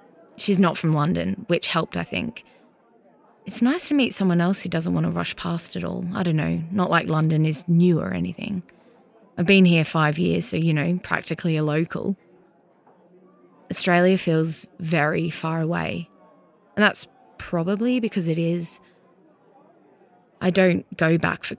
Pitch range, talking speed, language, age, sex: 165-195 Hz, 165 wpm, English, 20-39, female